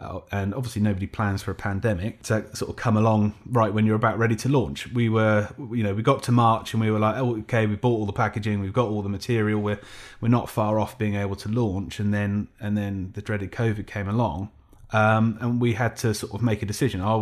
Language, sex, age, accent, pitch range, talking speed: English, male, 30-49, British, 95-115 Hz, 250 wpm